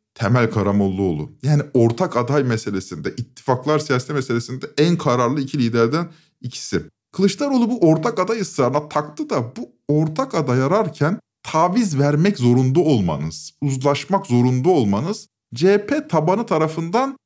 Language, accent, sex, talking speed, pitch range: Turkish, native, male, 120 wpm, 130-195 Hz